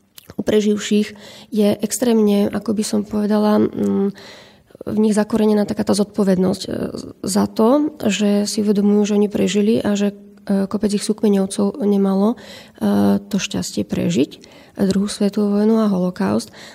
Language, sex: Slovak, female